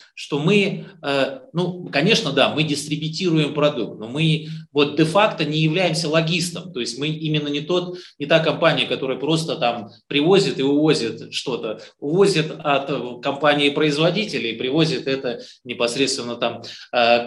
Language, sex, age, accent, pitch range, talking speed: Russian, male, 30-49, native, 130-165 Hz, 145 wpm